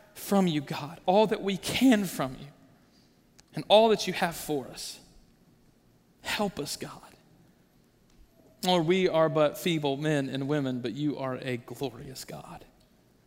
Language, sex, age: English, male, 40-59